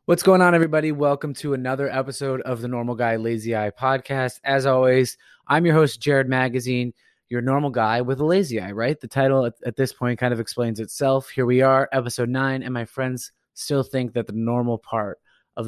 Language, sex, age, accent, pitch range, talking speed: English, male, 20-39, American, 115-140 Hz, 210 wpm